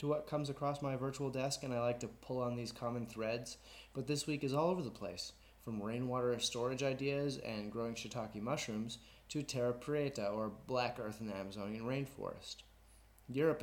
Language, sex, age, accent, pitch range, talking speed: English, male, 30-49, American, 105-130 Hz, 190 wpm